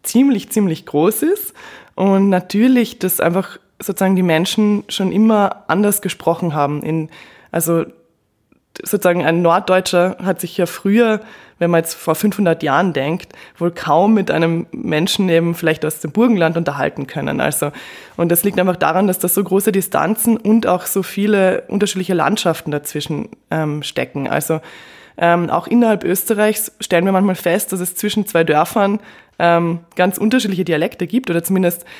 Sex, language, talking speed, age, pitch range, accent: female, German, 160 wpm, 20-39, 170-210 Hz, German